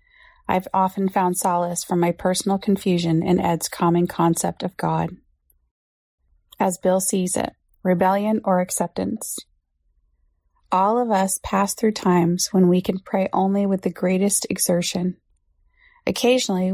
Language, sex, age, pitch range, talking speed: English, female, 30-49, 175-205 Hz, 135 wpm